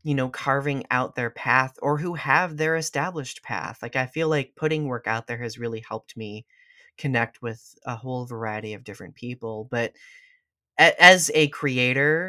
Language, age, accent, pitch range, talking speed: English, 20-39, American, 115-140 Hz, 175 wpm